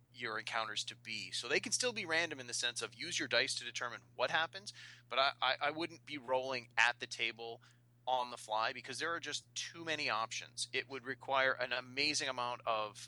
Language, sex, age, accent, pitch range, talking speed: English, male, 30-49, American, 115-140 Hz, 220 wpm